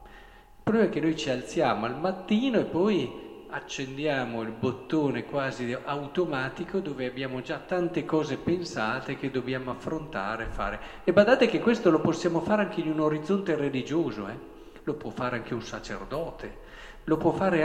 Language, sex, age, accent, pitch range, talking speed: Italian, male, 50-69, native, 125-190 Hz, 165 wpm